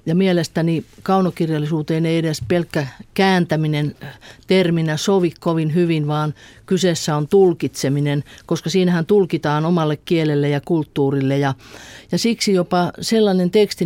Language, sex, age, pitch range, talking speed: Finnish, female, 50-69, 150-180 Hz, 120 wpm